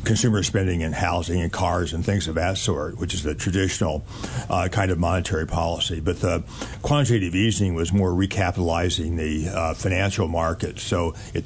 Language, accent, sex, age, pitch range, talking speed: English, American, male, 60-79, 85-105 Hz, 175 wpm